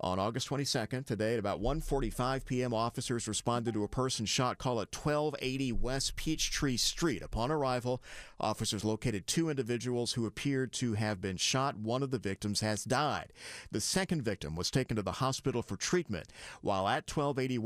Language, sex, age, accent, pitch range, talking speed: English, male, 50-69, American, 105-130 Hz, 175 wpm